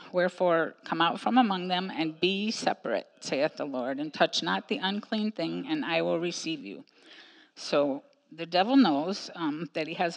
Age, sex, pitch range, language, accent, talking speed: 50-69, female, 170-255 Hz, English, American, 185 wpm